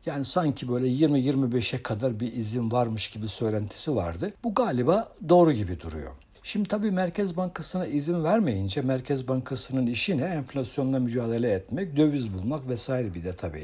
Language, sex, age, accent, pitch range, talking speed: Turkish, male, 60-79, native, 115-160 Hz, 155 wpm